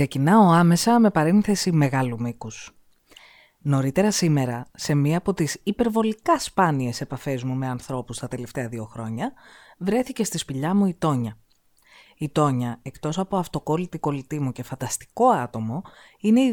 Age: 20-39